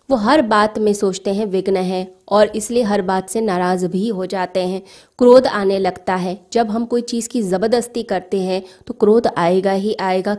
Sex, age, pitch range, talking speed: female, 20-39, 185-225 Hz, 200 wpm